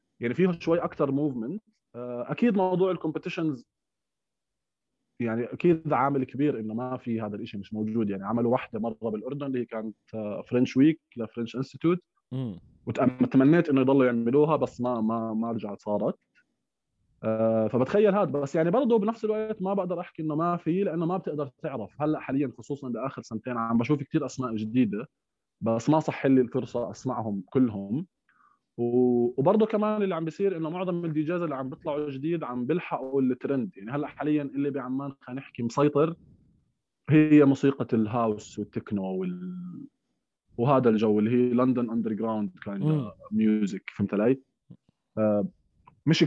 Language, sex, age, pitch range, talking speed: Arabic, male, 20-39, 115-155 Hz, 150 wpm